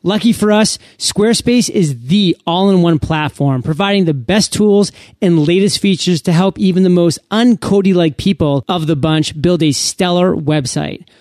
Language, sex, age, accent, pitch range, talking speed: English, male, 30-49, American, 160-205 Hz, 155 wpm